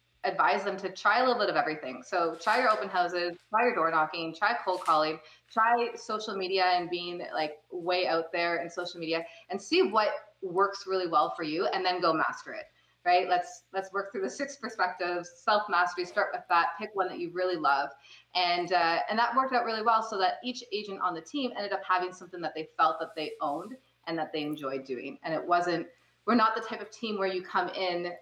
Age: 20-39